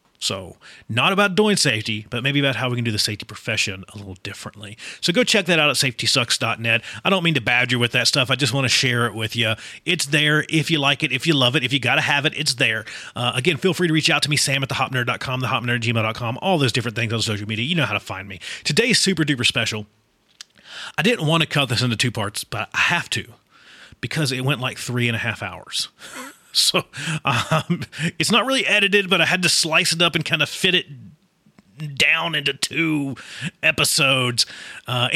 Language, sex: English, male